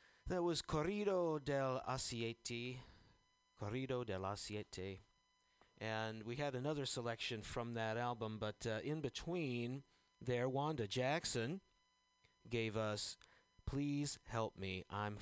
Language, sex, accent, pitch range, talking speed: English, male, American, 110-145 Hz, 115 wpm